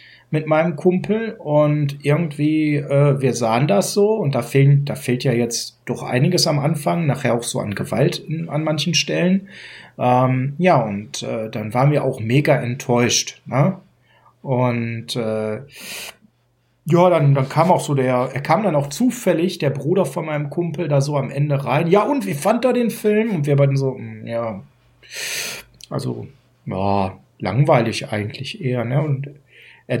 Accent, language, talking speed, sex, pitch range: German, German, 170 wpm, male, 130-170 Hz